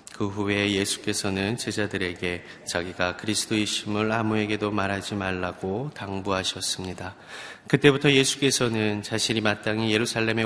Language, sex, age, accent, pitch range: Korean, male, 30-49, native, 95-110 Hz